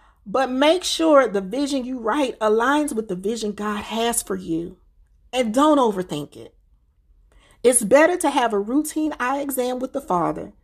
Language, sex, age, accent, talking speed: English, female, 40-59, American, 170 wpm